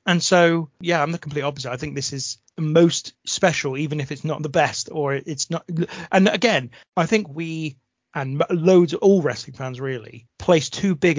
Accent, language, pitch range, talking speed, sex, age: British, English, 130-165 Hz, 200 wpm, male, 30-49